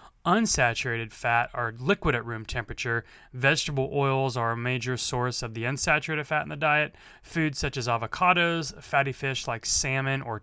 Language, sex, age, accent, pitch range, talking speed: English, male, 30-49, American, 115-135 Hz, 165 wpm